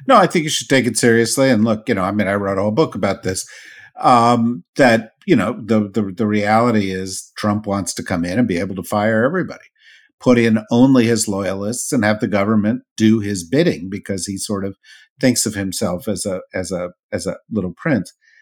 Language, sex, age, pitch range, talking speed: English, male, 50-69, 100-125 Hz, 220 wpm